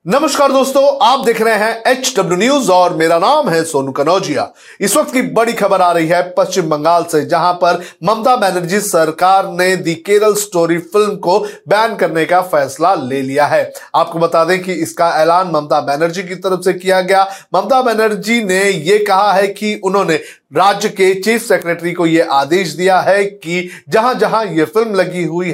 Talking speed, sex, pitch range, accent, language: 190 wpm, male, 165-200 Hz, native, Hindi